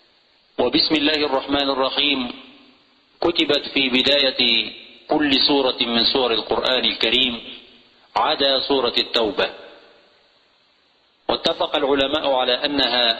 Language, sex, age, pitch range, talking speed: Portuguese, male, 50-69, 125-155 Hz, 90 wpm